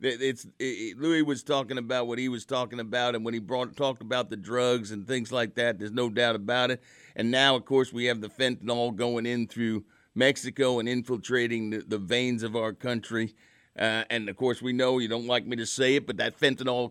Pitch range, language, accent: 120-150 Hz, English, American